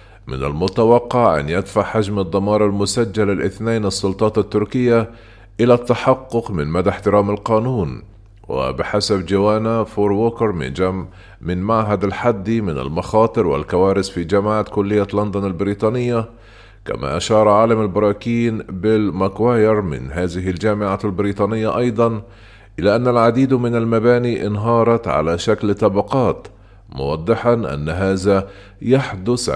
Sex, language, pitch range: male, Arabic, 100-115 Hz